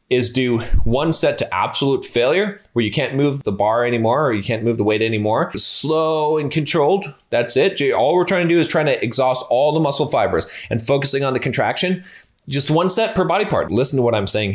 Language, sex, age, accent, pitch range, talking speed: English, male, 20-39, American, 120-170 Hz, 225 wpm